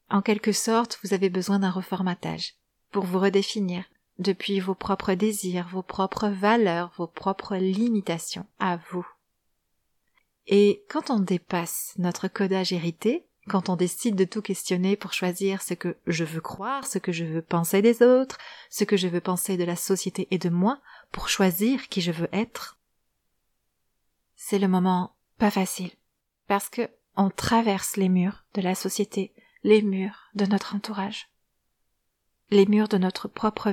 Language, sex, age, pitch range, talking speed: French, female, 30-49, 185-215 Hz, 160 wpm